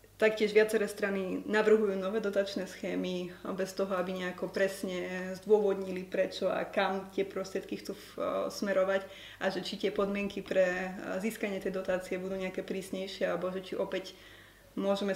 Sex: female